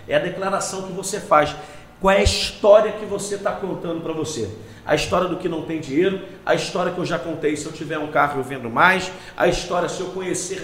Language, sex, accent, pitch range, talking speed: Portuguese, male, Brazilian, 160-195 Hz, 235 wpm